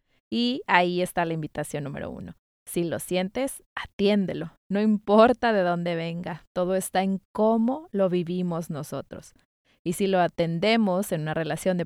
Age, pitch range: 20-39, 175-220 Hz